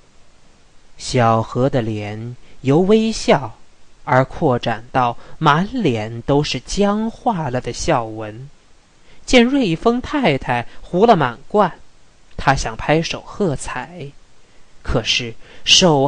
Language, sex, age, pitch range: Chinese, male, 20-39, 125-190 Hz